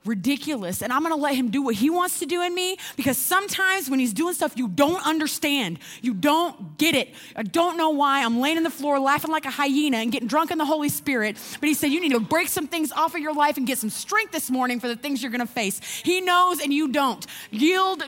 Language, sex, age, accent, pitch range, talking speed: English, female, 30-49, American, 230-310 Hz, 265 wpm